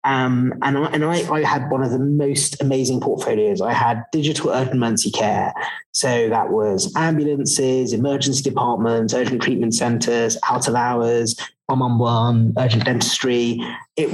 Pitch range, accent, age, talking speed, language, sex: 125-150 Hz, British, 30-49, 145 wpm, English, male